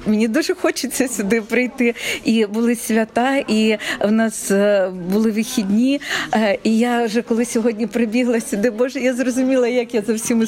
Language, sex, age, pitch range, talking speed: Ukrainian, female, 40-59, 195-235 Hz, 155 wpm